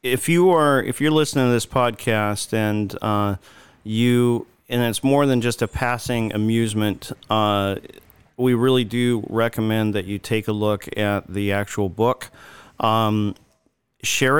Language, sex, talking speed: English, male, 150 wpm